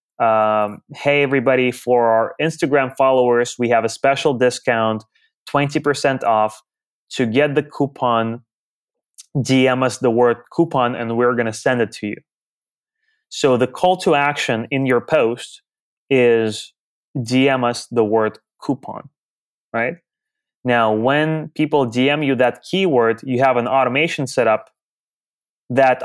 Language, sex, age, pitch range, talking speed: English, male, 20-39, 115-135 Hz, 140 wpm